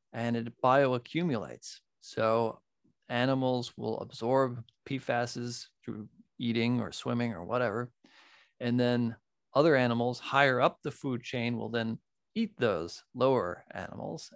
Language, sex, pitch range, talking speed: English, male, 115-140 Hz, 120 wpm